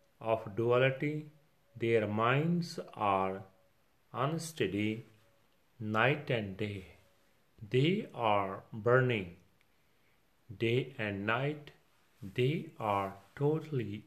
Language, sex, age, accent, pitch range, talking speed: English, male, 40-59, Indian, 100-140 Hz, 75 wpm